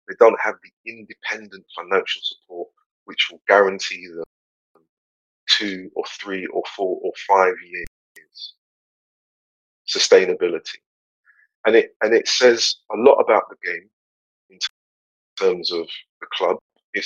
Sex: male